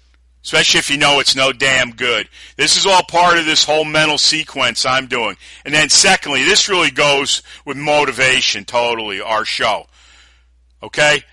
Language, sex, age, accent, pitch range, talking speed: English, male, 40-59, American, 120-155 Hz, 165 wpm